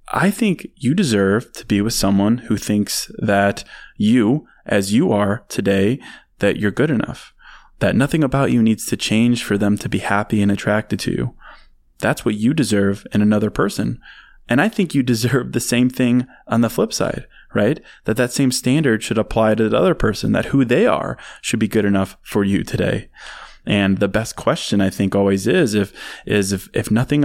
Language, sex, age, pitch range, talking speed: English, male, 20-39, 100-120 Hz, 200 wpm